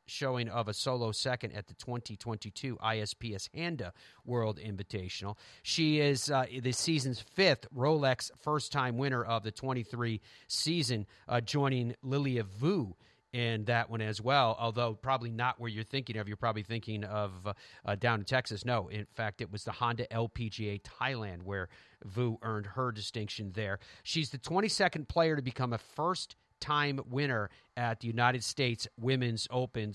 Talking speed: 160 wpm